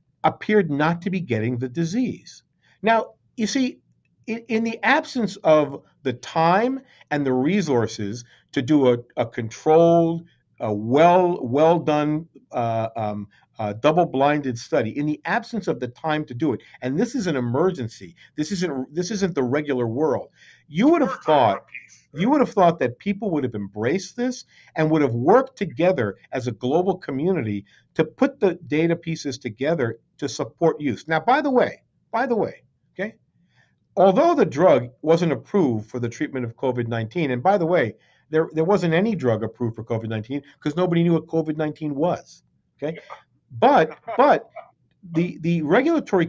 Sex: male